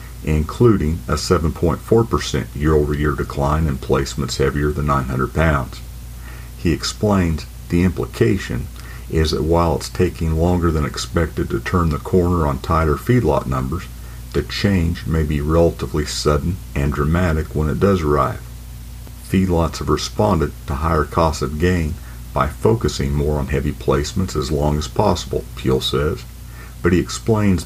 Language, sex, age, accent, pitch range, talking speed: English, male, 50-69, American, 65-85 Hz, 145 wpm